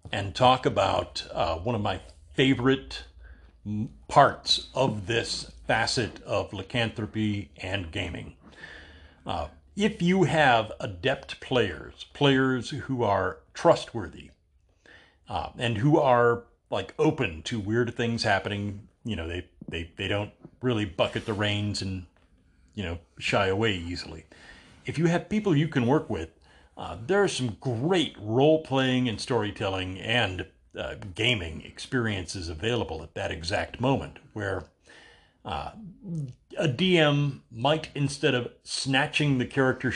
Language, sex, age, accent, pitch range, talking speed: English, male, 40-59, American, 95-135 Hz, 130 wpm